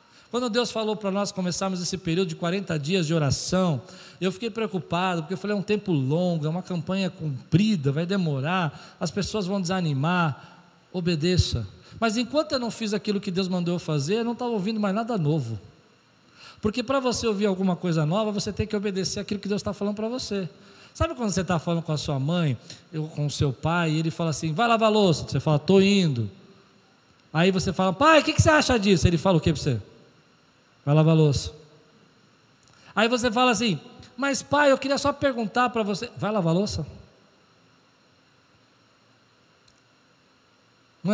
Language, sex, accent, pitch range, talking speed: Portuguese, male, Brazilian, 160-220 Hz, 195 wpm